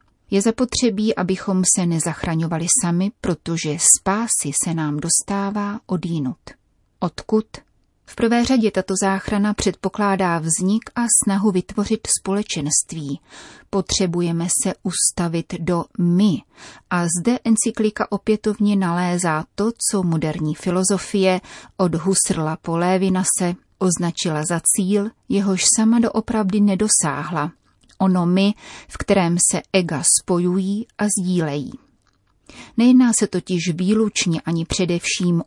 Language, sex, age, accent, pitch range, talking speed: Czech, female, 30-49, native, 165-205 Hz, 110 wpm